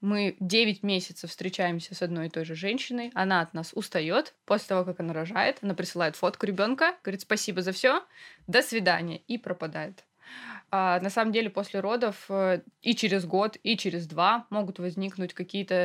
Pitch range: 175-210 Hz